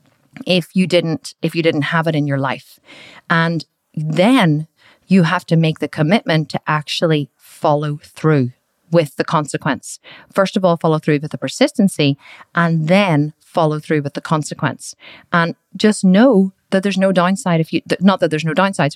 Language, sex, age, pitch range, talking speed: English, female, 30-49, 155-185 Hz, 175 wpm